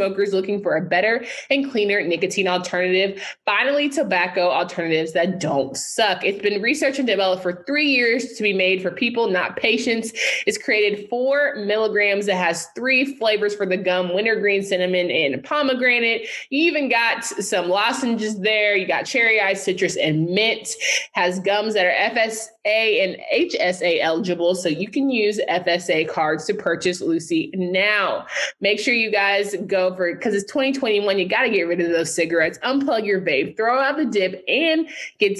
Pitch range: 180-235 Hz